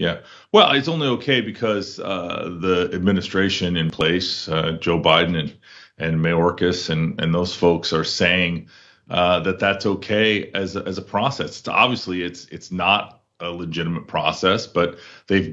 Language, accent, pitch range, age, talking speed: English, American, 90-110 Hz, 30-49, 160 wpm